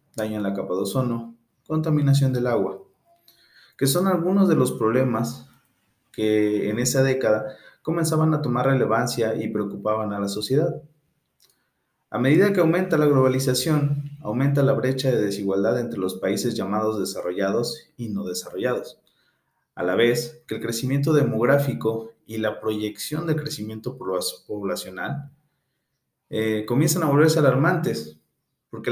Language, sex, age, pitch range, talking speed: Spanish, male, 30-49, 110-150 Hz, 135 wpm